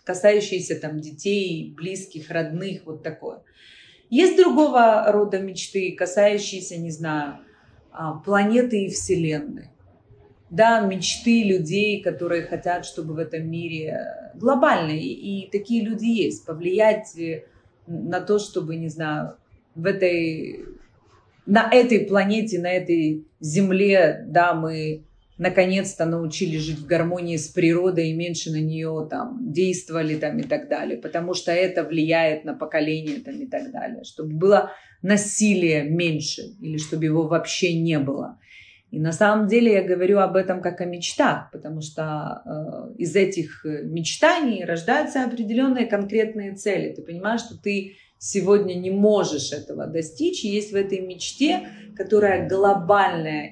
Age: 30-49